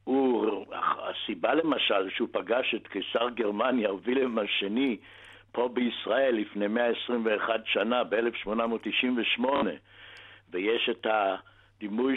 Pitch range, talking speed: 105-135 Hz, 95 wpm